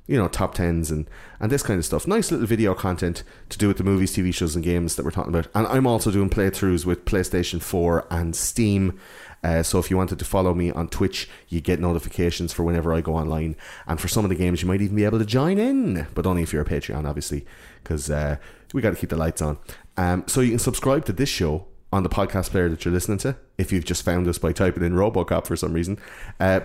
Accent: Irish